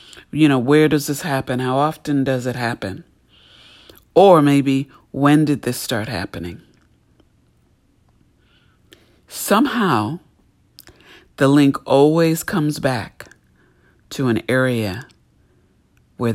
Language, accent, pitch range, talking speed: English, American, 115-140 Hz, 105 wpm